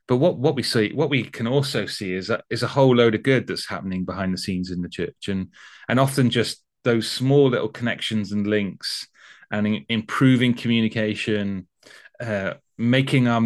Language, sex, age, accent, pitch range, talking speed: English, male, 30-49, British, 100-125 Hz, 190 wpm